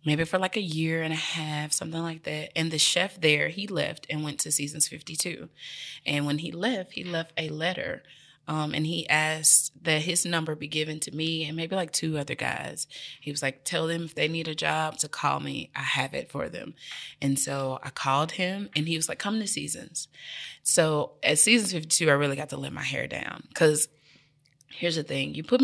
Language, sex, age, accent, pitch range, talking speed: English, female, 20-39, American, 145-165 Hz, 220 wpm